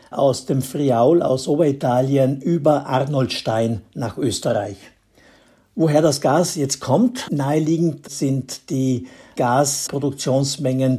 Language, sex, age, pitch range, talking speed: German, male, 60-79, 125-155 Hz, 100 wpm